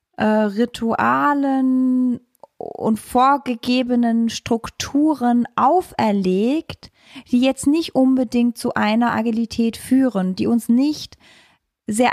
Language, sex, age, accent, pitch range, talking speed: German, female, 20-39, German, 215-255 Hz, 85 wpm